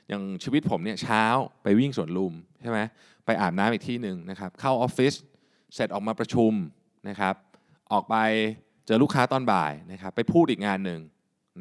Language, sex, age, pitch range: Thai, male, 20-39, 95-125 Hz